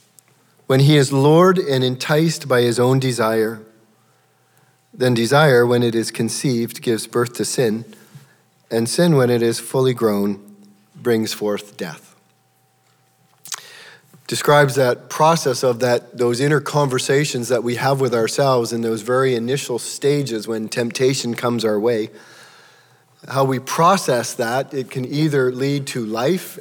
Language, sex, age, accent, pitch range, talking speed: English, male, 40-59, American, 110-140 Hz, 140 wpm